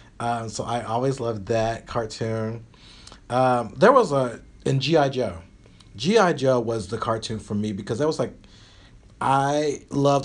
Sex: male